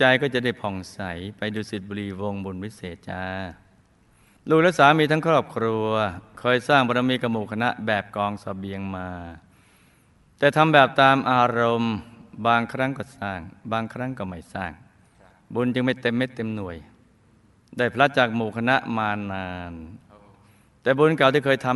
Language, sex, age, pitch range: Thai, male, 20-39, 100-125 Hz